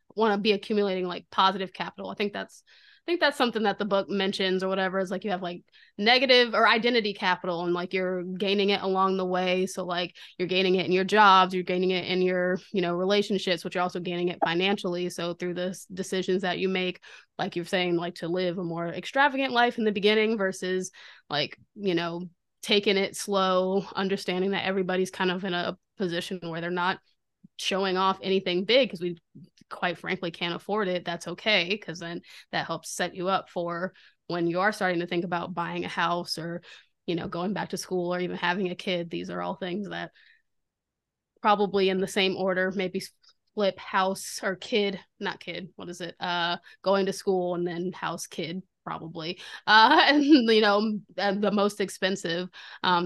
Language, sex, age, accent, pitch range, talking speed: English, female, 20-39, American, 180-200 Hz, 200 wpm